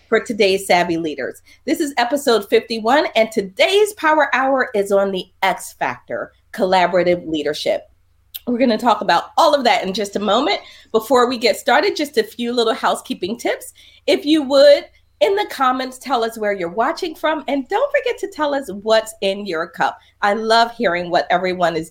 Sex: female